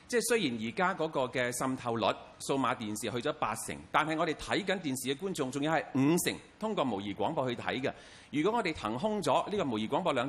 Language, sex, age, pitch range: Chinese, male, 40-59, 125-190 Hz